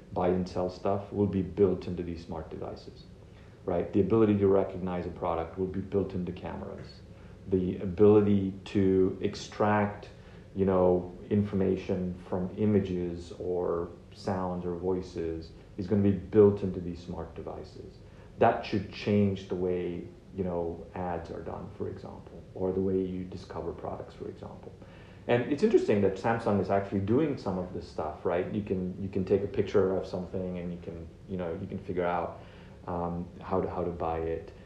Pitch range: 90-100 Hz